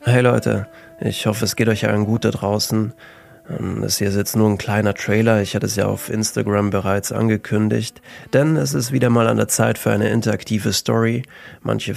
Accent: German